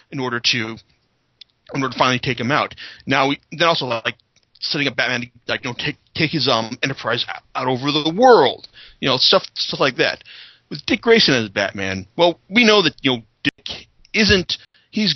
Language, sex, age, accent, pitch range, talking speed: English, male, 40-59, American, 125-185 Hz, 205 wpm